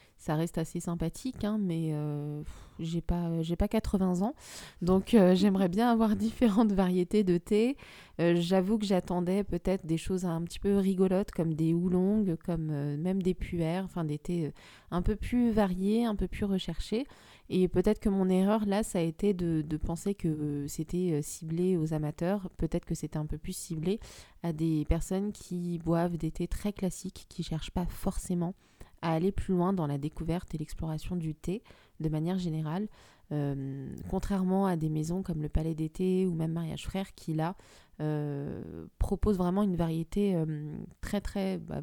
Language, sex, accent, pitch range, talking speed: French, female, French, 160-195 Hz, 185 wpm